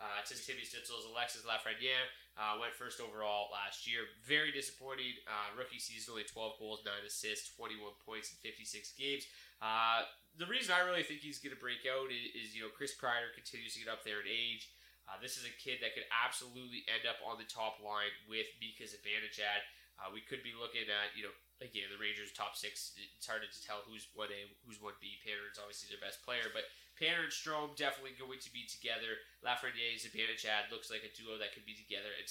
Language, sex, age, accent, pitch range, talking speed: English, male, 20-39, American, 105-130 Hz, 215 wpm